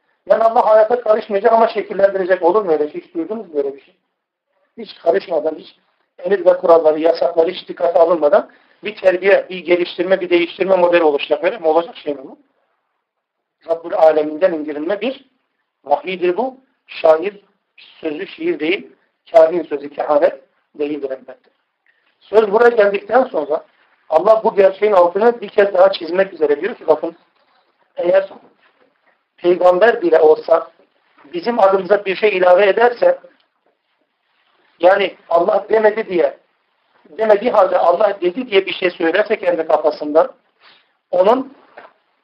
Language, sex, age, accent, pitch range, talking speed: Turkish, male, 50-69, native, 170-215 Hz, 130 wpm